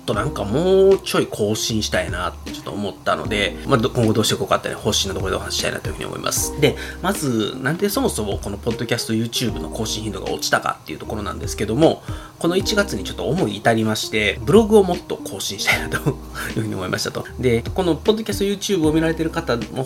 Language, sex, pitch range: Japanese, male, 105-150 Hz